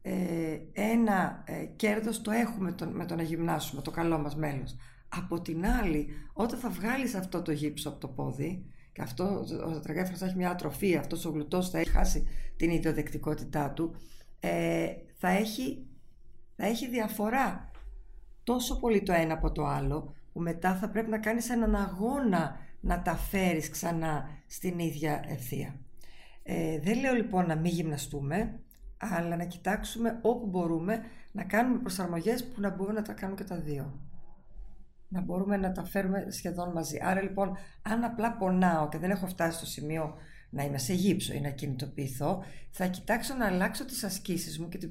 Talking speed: 175 wpm